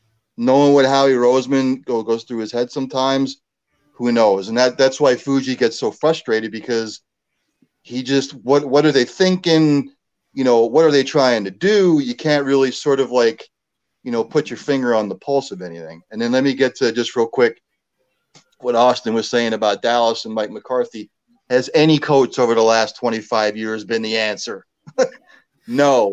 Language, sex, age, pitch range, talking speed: English, male, 30-49, 120-150 Hz, 180 wpm